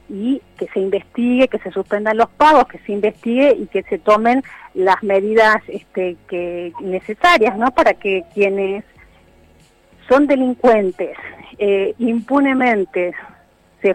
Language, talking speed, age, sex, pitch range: Spanish, 130 wpm, 40-59, female, 200-255 Hz